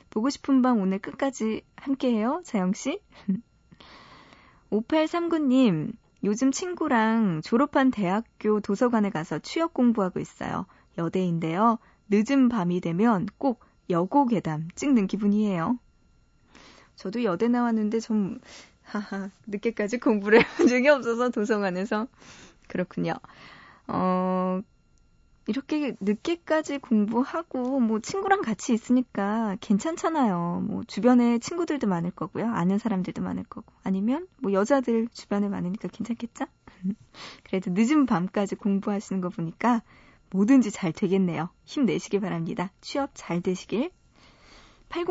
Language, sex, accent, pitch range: Korean, female, native, 195-255 Hz